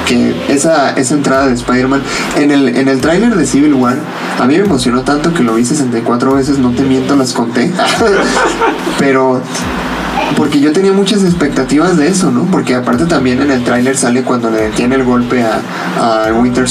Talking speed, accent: 190 wpm, Mexican